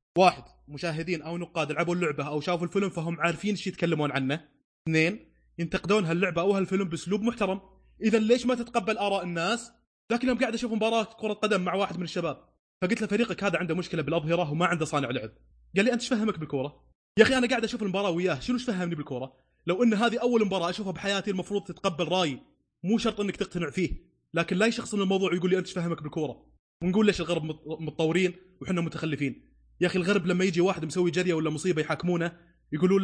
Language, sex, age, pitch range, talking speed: Arabic, male, 20-39, 155-190 Hz, 195 wpm